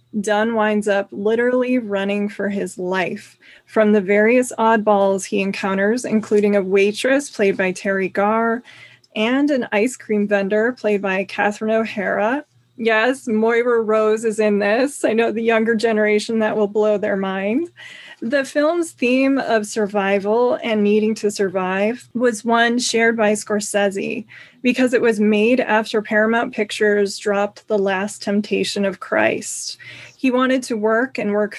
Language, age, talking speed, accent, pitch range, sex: English, 20-39, 150 wpm, American, 205-230 Hz, female